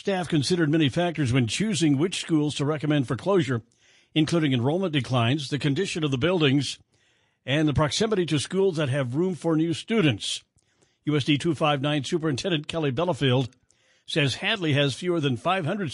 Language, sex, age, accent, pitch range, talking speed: English, male, 60-79, American, 135-175 Hz, 160 wpm